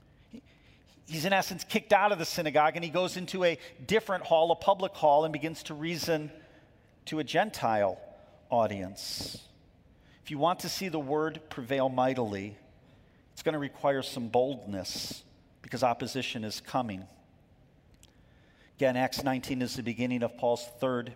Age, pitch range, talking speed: 40-59, 125-155 Hz, 155 wpm